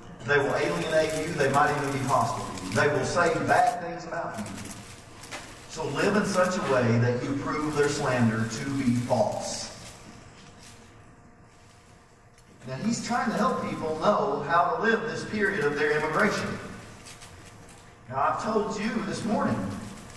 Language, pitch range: English, 115-175 Hz